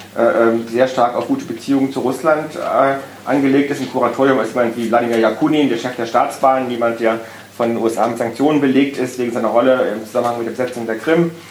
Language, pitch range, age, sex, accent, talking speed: German, 110-130 Hz, 40-59, male, German, 215 wpm